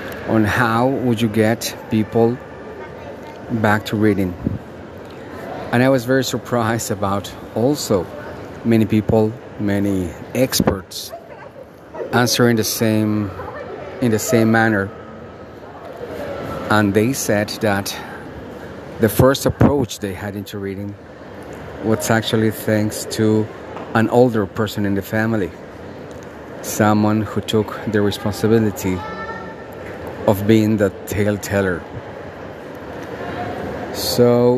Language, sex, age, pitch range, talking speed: English, male, 40-59, 100-115 Hz, 100 wpm